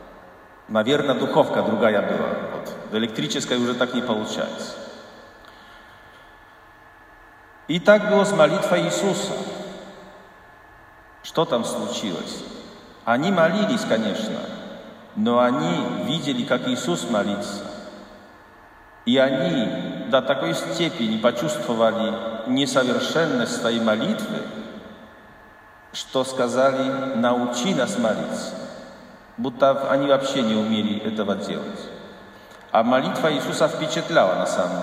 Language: Russian